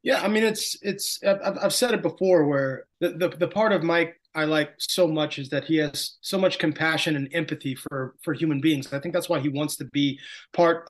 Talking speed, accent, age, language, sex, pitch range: 230 wpm, American, 20-39, English, male, 145-170 Hz